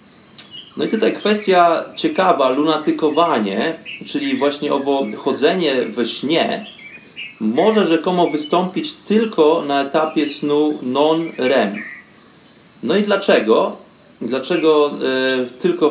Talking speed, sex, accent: 95 wpm, male, native